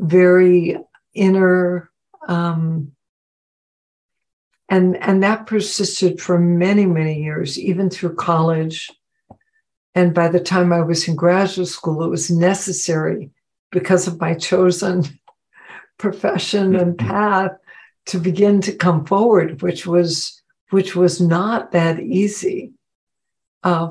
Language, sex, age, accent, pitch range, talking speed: English, female, 60-79, American, 170-190 Hz, 115 wpm